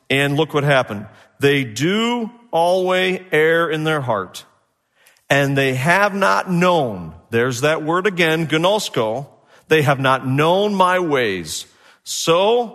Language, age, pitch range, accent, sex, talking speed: English, 40-59, 145-205 Hz, American, male, 130 wpm